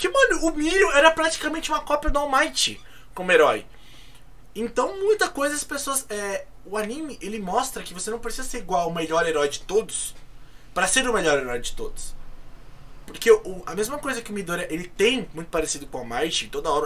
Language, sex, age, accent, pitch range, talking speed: Portuguese, male, 20-39, Brazilian, 165-265 Hz, 205 wpm